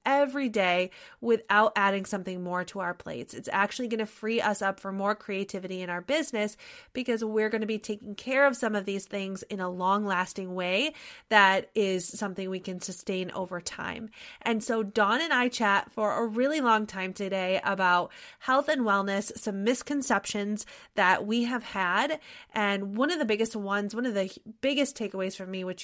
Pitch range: 195-230 Hz